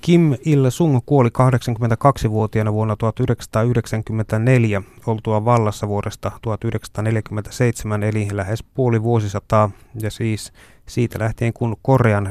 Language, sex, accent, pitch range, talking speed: Finnish, male, native, 105-120 Hz, 95 wpm